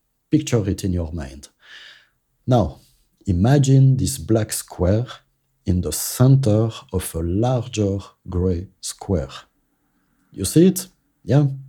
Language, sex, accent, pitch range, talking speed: English, male, French, 90-125 Hz, 115 wpm